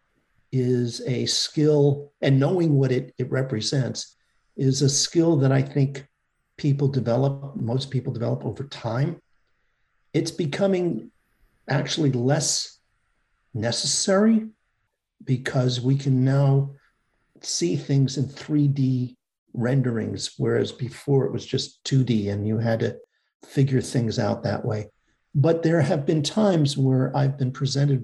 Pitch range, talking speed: 125-145 Hz, 130 wpm